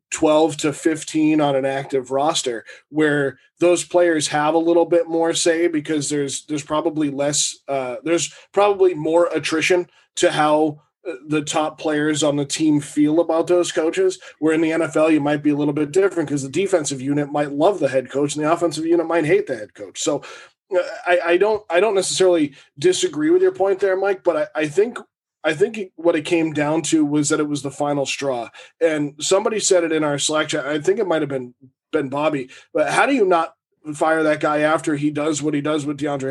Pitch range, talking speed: 150-175 Hz, 215 wpm